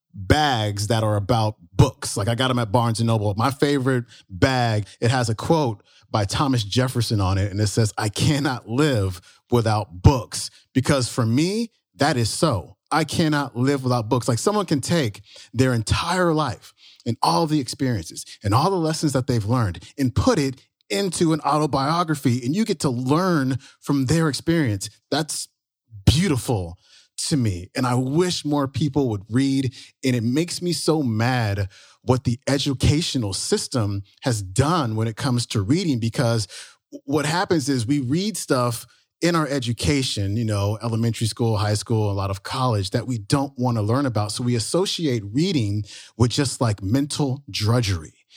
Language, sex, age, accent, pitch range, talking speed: English, male, 30-49, American, 115-150 Hz, 175 wpm